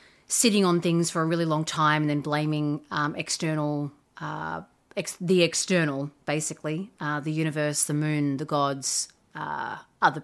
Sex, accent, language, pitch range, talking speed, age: female, Australian, English, 150-180 Hz, 160 wpm, 30-49